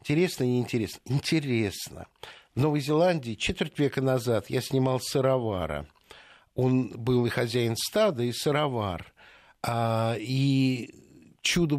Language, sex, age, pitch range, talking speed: Russian, male, 60-79, 120-155 Hz, 115 wpm